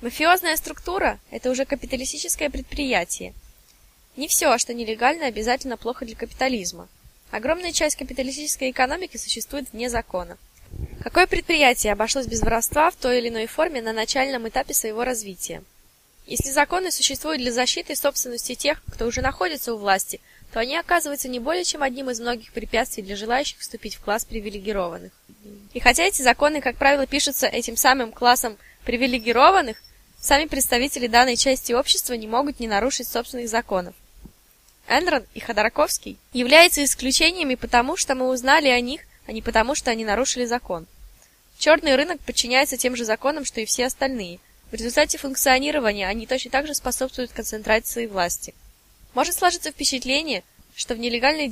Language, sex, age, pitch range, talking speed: Russian, female, 20-39, 230-285 Hz, 150 wpm